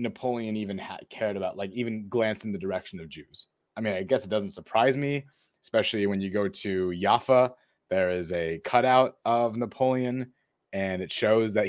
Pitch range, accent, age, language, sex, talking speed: 95-120 Hz, American, 20-39, English, male, 190 wpm